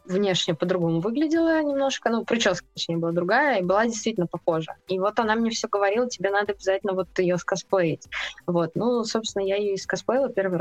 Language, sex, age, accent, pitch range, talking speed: Russian, female, 20-39, native, 180-215 Hz, 180 wpm